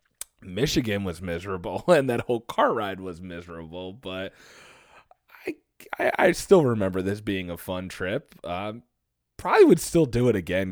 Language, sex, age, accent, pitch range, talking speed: English, male, 20-39, American, 90-110 Hz, 155 wpm